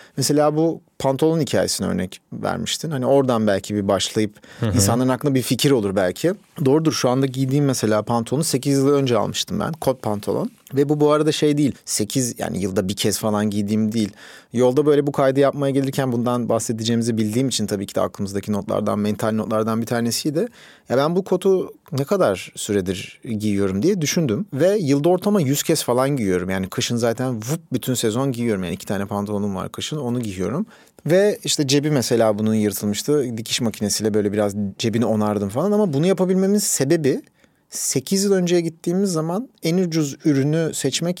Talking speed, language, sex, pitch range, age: 175 wpm, Turkish, male, 110-155 Hz, 40-59